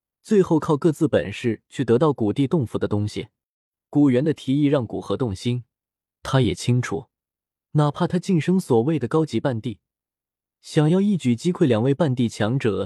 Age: 20-39